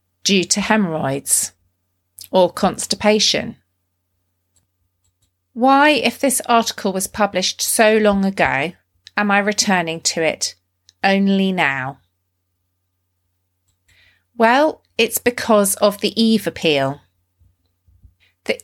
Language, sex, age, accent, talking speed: English, female, 40-59, British, 95 wpm